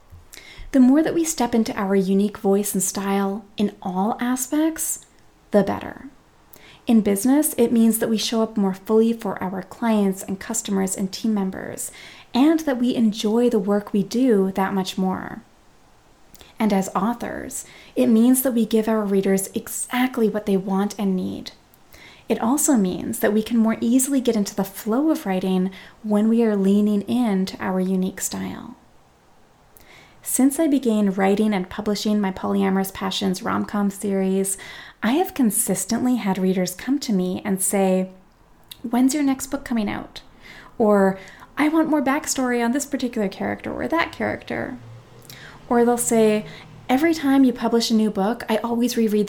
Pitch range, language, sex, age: 195-240 Hz, English, female, 30-49